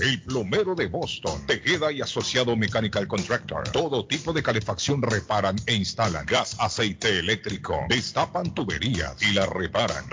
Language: Spanish